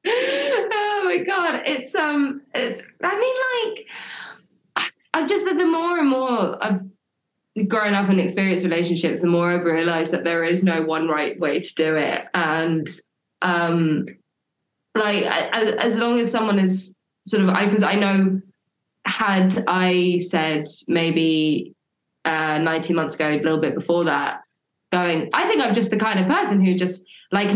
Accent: British